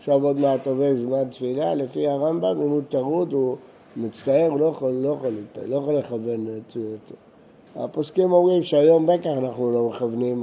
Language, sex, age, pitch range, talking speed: Hebrew, male, 60-79, 135-175 Hz, 165 wpm